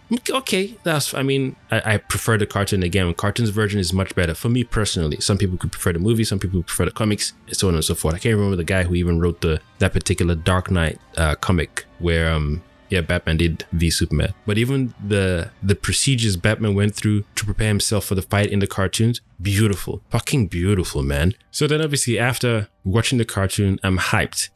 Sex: male